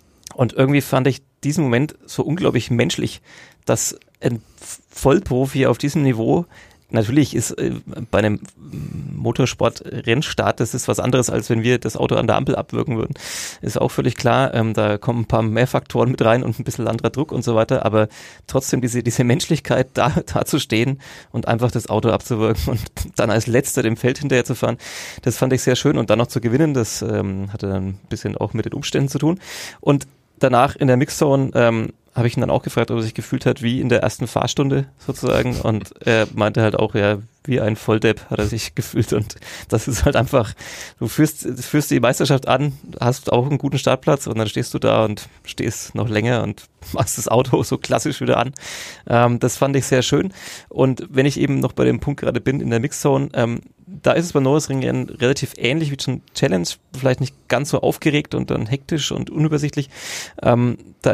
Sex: male